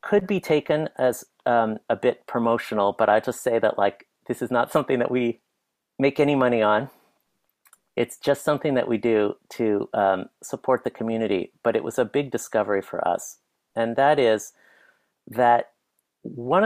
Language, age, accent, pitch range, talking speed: English, 50-69, American, 110-140 Hz, 175 wpm